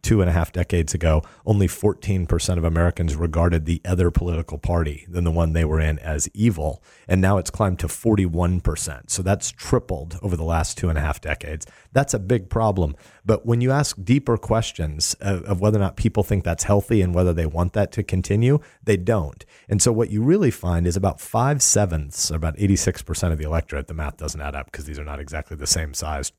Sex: male